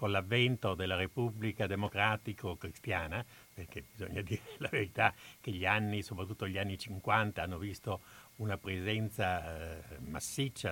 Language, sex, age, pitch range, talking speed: Italian, male, 60-79, 95-125 Hz, 135 wpm